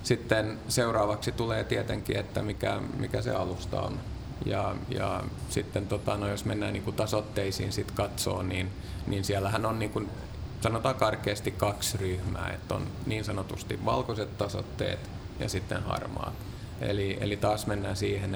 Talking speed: 145 wpm